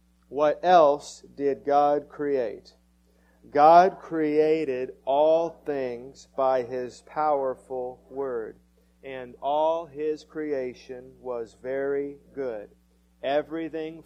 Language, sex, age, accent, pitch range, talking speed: English, male, 40-59, American, 125-160 Hz, 90 wpm